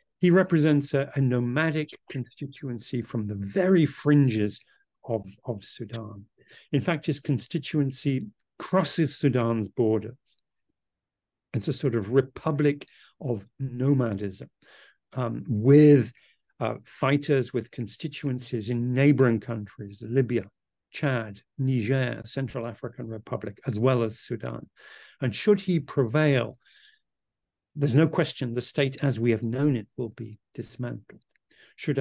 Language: German